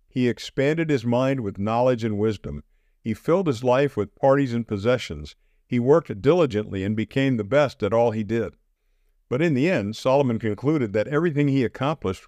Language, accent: English, American